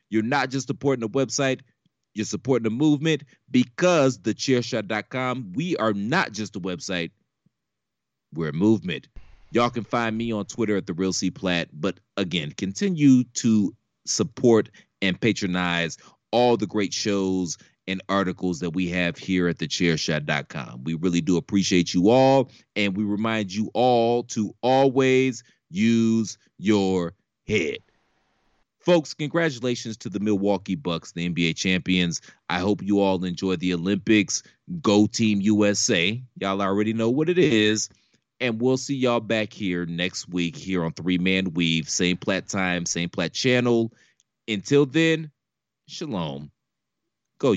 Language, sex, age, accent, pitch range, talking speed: English, male, 30-49, American, 90-120 Hz, 140 wpm